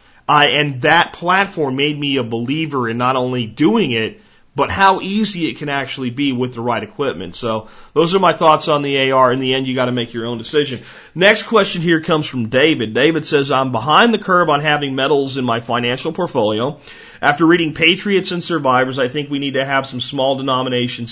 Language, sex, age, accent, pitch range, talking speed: English, male, 40-59, American, 125-150 Hz, 215 wpm